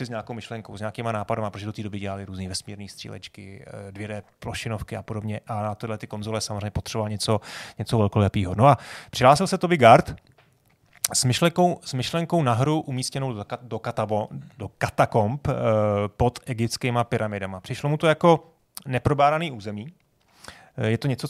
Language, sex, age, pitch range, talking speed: Czech, male, 30-49, 115-140 Hz, 165 wpm